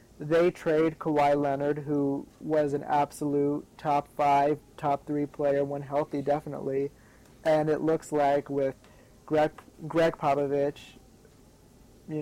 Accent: American